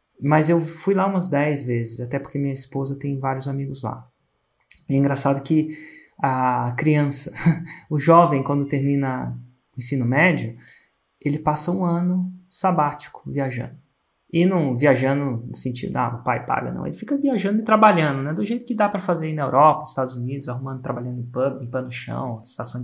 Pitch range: 135-160 Hz